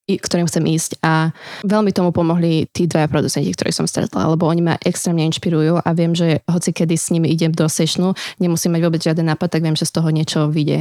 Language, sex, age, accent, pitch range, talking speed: Czech, female, 20-39, native, 160-175 Hz, 230 wpm